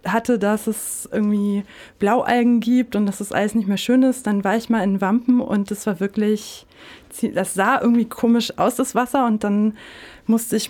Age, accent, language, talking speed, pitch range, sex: 20-39, German, German, 195 wpm, 195-240 Hz, female